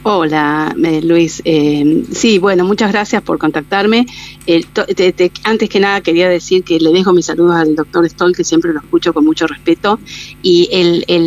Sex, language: female, Spanish